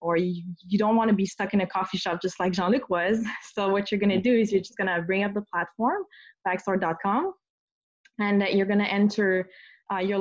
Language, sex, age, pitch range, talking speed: English, female, 20-39, 180-220 Hz, 205 wpm